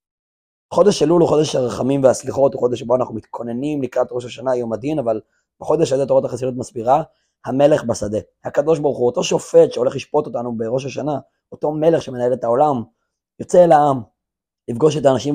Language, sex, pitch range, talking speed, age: Hebrew, male, 125-155 Hz, 170 wpm, 20-39